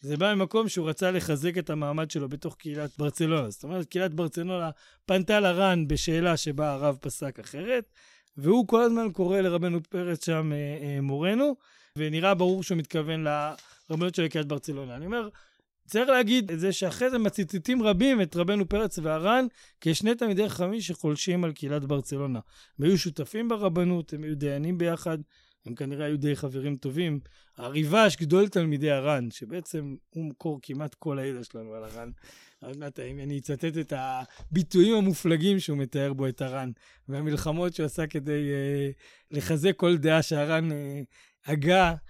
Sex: male